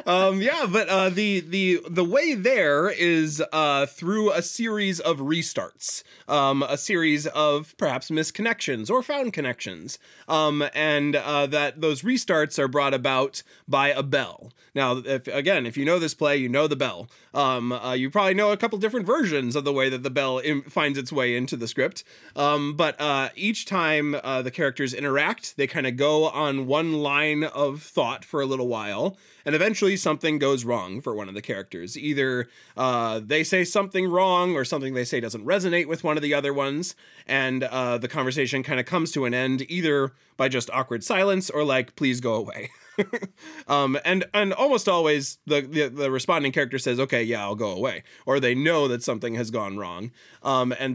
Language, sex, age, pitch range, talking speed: English, male, 20-39, 135-180 Hz, 195 wpm